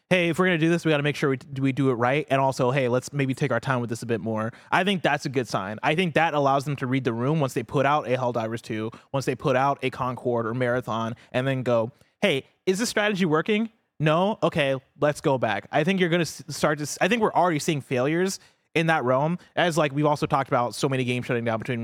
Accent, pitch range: American, 125-160 Hz